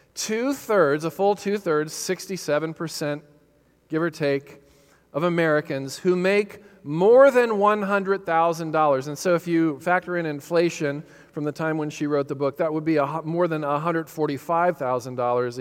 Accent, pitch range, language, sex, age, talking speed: American, 130-175 Hz, English, male, 40-59, 140 wpm